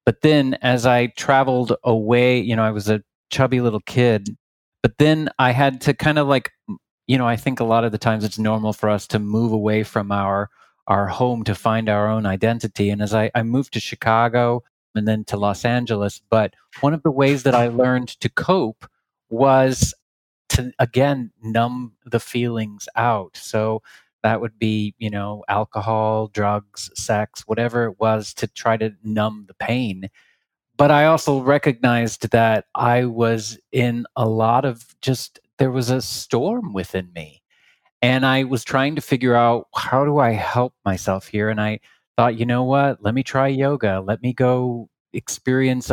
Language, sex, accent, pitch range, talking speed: English, male, American, 110-130 Hz, 180 wpm